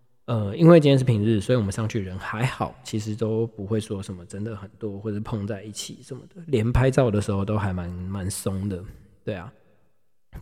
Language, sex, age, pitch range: Chinese, male, 20-39, 100-120 Hz